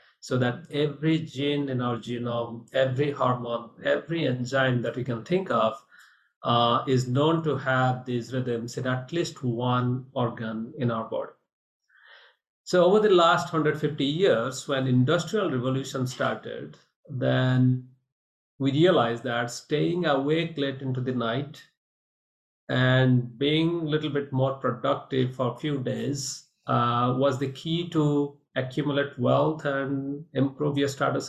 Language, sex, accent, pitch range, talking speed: English, male, Indian, 125-150 Hz, 140 wpm